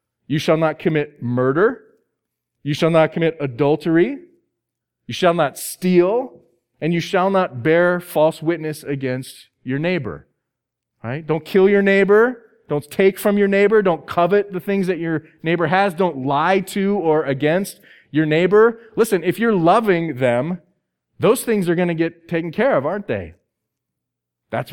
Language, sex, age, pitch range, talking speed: Dutch, male, 30-49, 145-200 Hz, 160 wpm